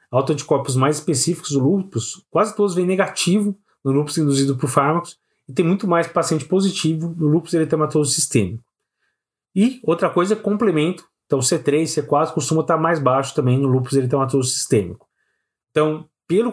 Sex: male